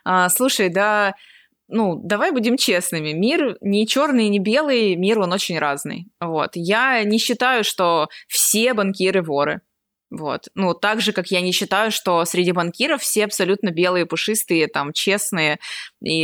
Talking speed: 150 wpm